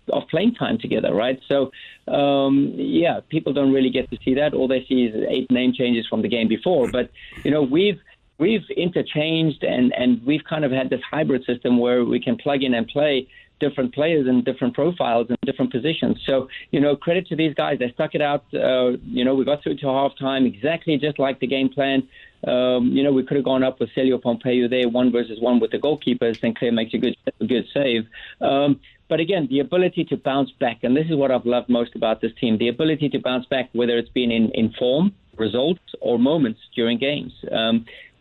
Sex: male